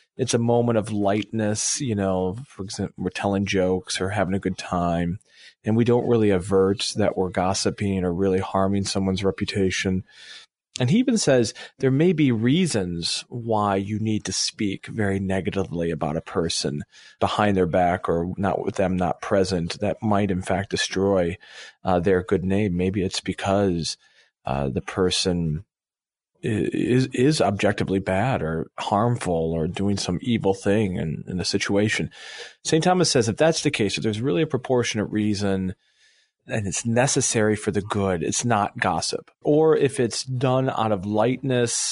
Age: 40-59